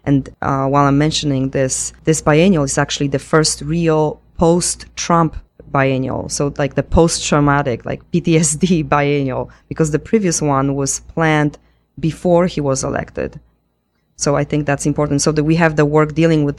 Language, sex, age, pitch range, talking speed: English, female, 20-39, 135-150 Hz, 165 wpm